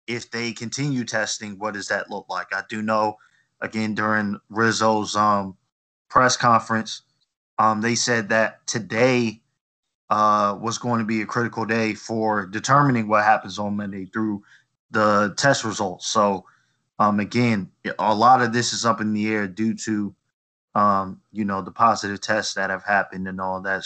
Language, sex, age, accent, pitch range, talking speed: English, male, 20-39, American, 110-125 Hz, 170 wpm